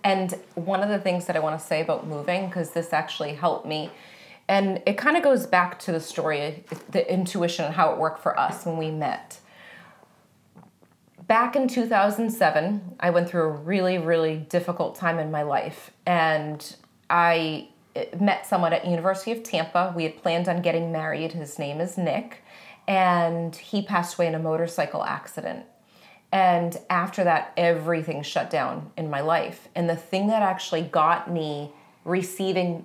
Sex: female